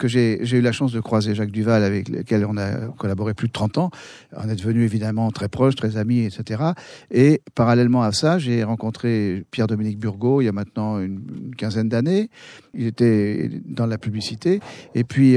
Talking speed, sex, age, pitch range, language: 200 wpm, male, 50-69, 105-125 Hz, French